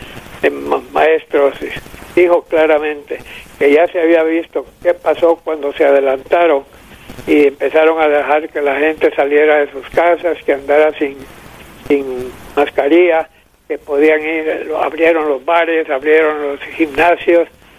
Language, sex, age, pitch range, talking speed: English, male, 60-79, 150-170 Hz, 130 wpm